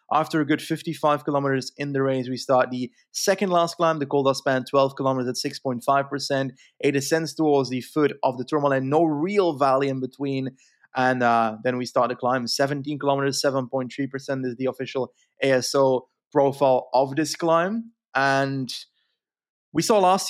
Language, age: English, 20-39